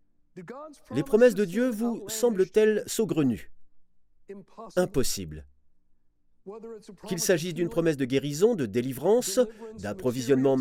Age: 40-59